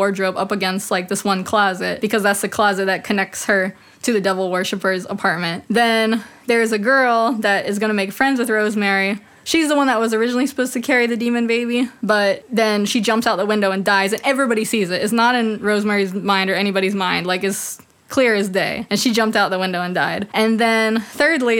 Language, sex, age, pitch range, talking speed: English, female, 20-39, 200-240 Hz, 220 wpm